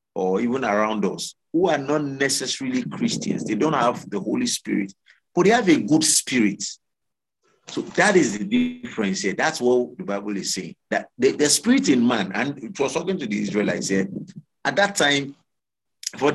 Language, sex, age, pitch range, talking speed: English, male, 50-69, 100-165 Hz, 185 wpm